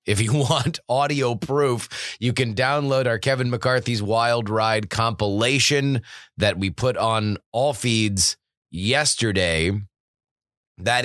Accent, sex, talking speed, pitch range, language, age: American, male, 120 wpm, 100-130 Hz, English, 30-49